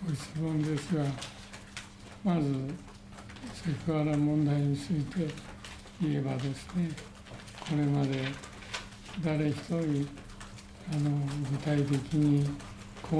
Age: 60-79